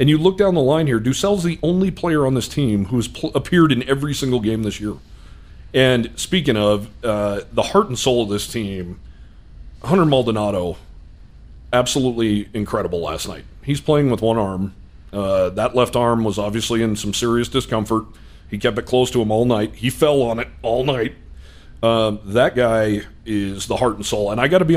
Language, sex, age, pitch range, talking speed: English, male, 40-59, 100-125 Hz, 195 wpm